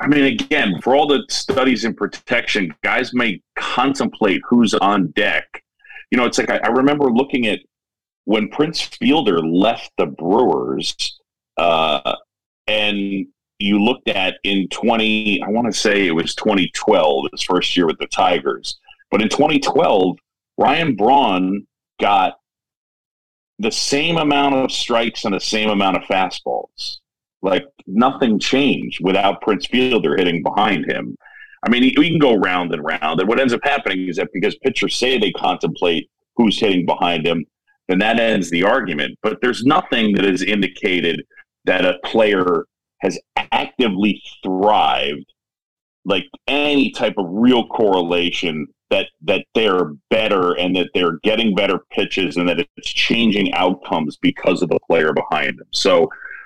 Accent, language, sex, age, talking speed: American, English, male, 40-59, 155 wpm